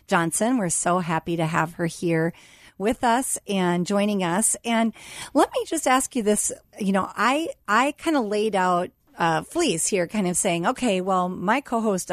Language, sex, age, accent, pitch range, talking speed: English, female, 40-59, American, 170-220 Hz, 190 wpm